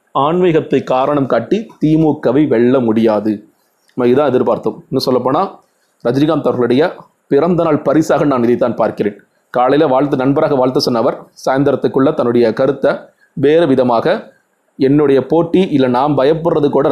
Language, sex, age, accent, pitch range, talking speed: Tamil, male, 30-49, native, 130-155 Hz, 120 wpm